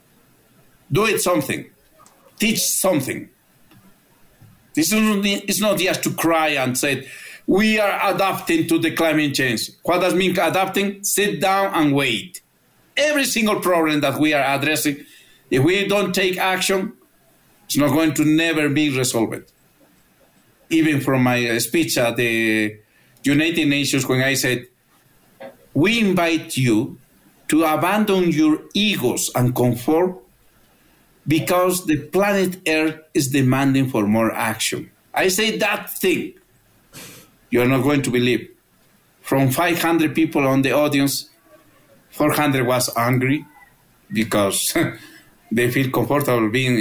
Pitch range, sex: 130-185 Hz, male